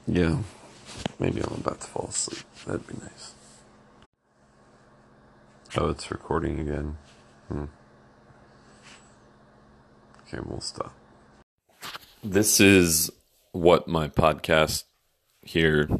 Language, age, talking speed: English, 30-49, 90 wpm